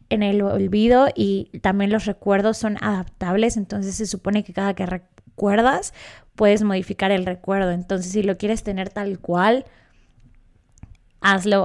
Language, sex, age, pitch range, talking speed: Spanish, female, 20-39, 195-245 Hz, 145 wpm